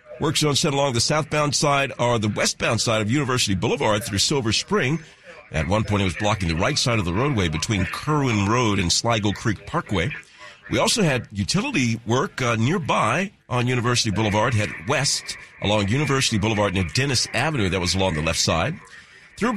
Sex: male